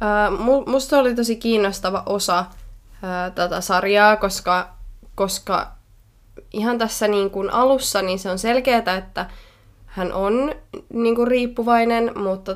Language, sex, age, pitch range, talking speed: Finnish, female, 20-39, 175-210 Hz, 125 wpm